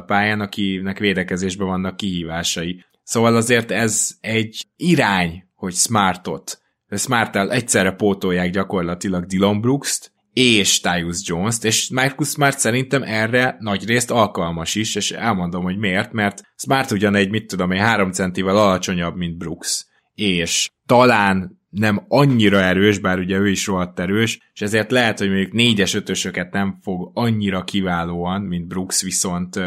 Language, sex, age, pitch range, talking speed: Hungarian, male, 20-39, 90-110 Hz, 140 wpm